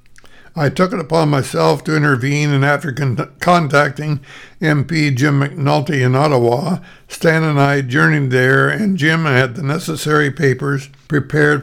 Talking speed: 140 wpm